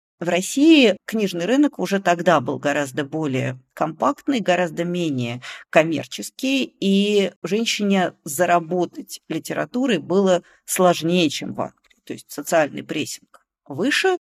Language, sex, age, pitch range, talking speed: Russian, female, 40-59, 155-220 Hz, 115 wpm